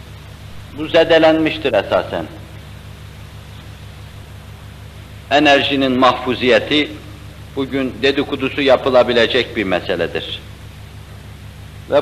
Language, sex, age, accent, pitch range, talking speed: Turkish, male, 60-79, native, 105-145 Hz, 55 wpm